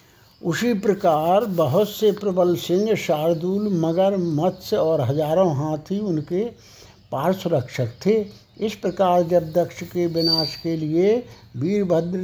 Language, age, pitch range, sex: Hindi, 60-79, 155-195 Hz, male